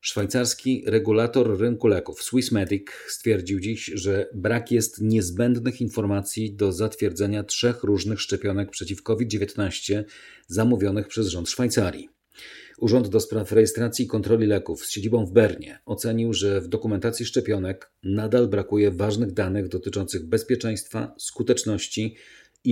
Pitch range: 100-115 Hz